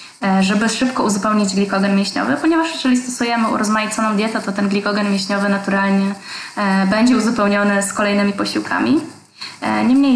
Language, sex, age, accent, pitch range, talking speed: Polish, female, 20-39, native, 200-230 Hz, 125 wpm